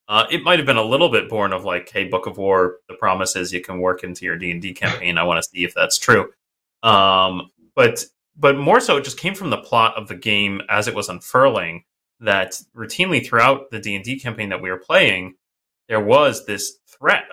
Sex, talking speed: male, 220 wpm